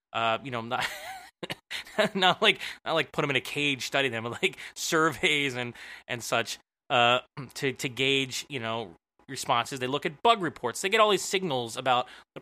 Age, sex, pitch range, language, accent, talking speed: 20-39, male, 125-165 Hz, English, American, 195 wpm